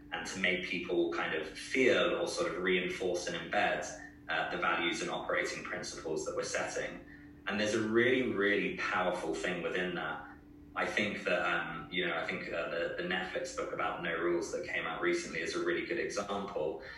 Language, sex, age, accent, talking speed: English, male, 20-39, British, 200 wpm